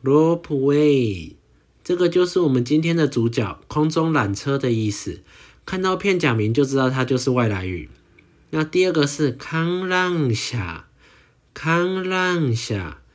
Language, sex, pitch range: Chinese, male, 120-160 Hz